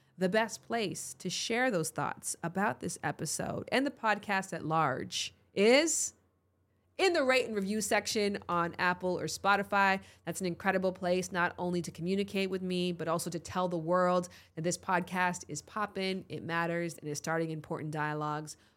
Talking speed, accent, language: 175 wpm, American, English